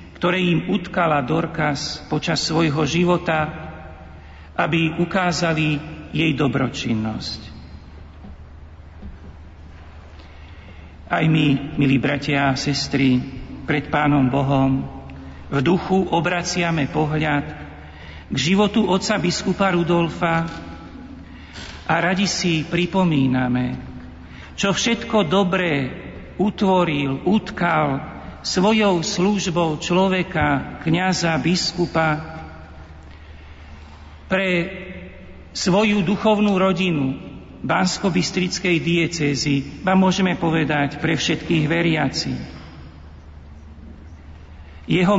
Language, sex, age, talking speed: Slovak, male, 50-69, 75 wpm